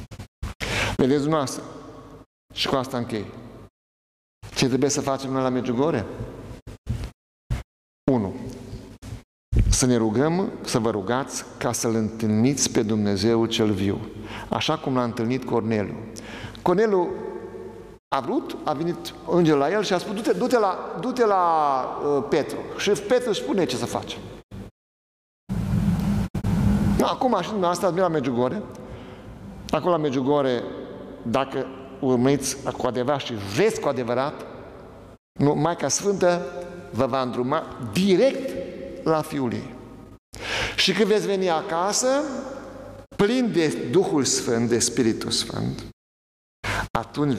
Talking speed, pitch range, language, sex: 120 wpm, 120-170 Hz, Romanian, male